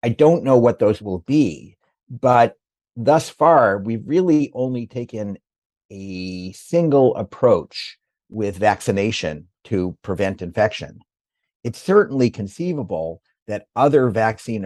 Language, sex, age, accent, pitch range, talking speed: English, male, 50-69, American, 100-125 Hz, 115 wpm